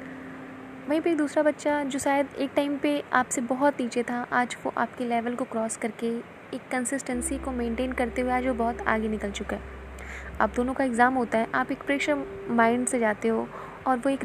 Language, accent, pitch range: Hindi, native, 215-255 Hz